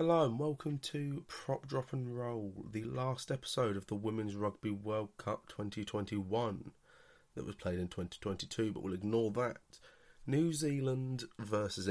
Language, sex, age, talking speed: English, male, 30-49, 150 wpm